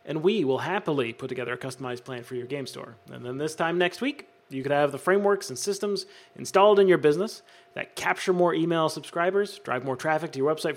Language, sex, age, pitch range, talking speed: English, male, 30-49, 135-190 Hz, 230 wpm